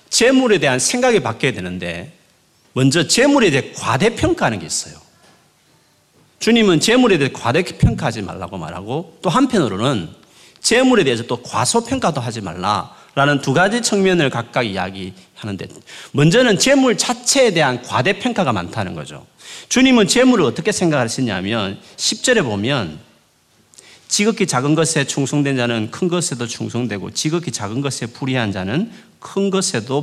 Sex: male